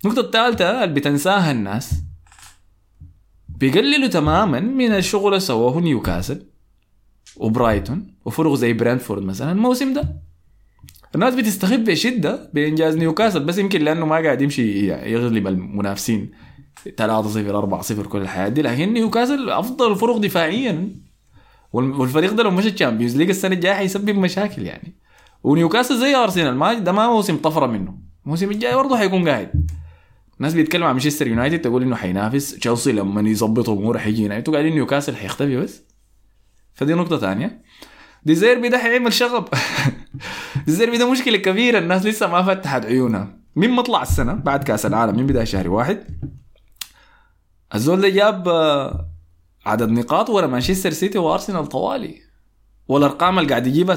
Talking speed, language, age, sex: 140 wpm, Arabic, 20-39, male